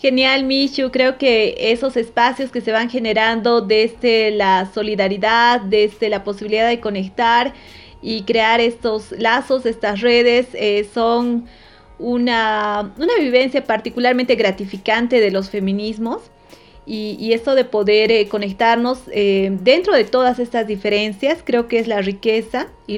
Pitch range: 210-245 Hz